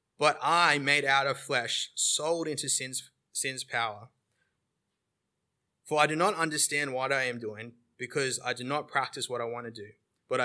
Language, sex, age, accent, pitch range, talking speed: English, male, 20-39, Australian, 120-150 Hz, 180 wpm